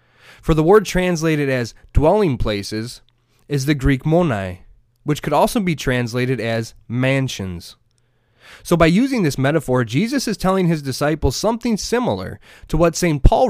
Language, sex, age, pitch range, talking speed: English, male, 30-49, 115-165 Hz, 150 wpm